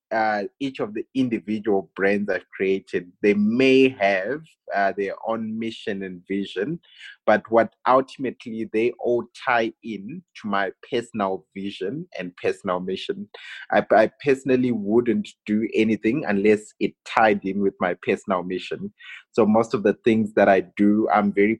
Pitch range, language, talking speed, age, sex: 95-115 Hz, English, 155 wpm, 20-39, male